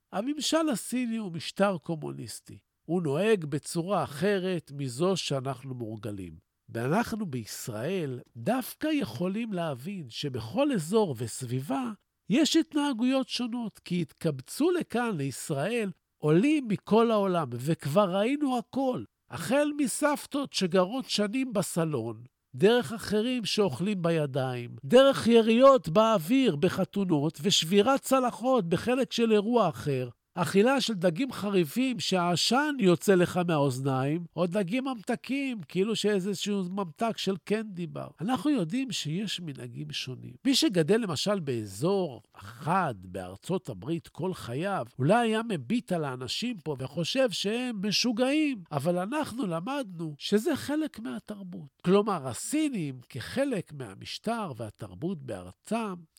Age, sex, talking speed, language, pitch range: 50-69, male, 110 wpm, Hebrew, 150-230 Hz